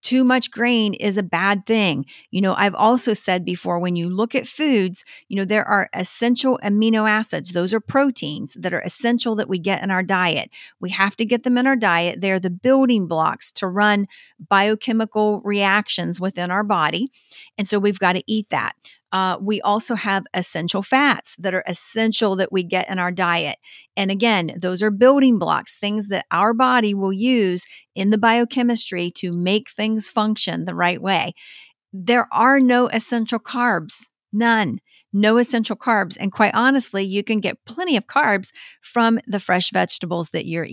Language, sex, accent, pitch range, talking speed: English, female, American, 185-225 Hz, 185 wpm